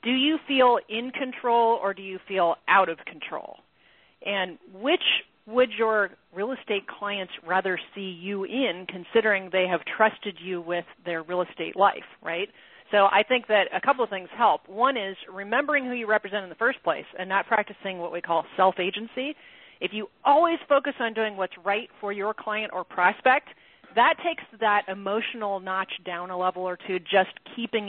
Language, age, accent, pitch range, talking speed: English, 40-59, American, 180-225 Hz, 185 wpm